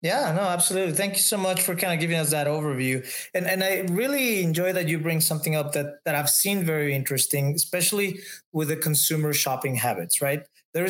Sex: male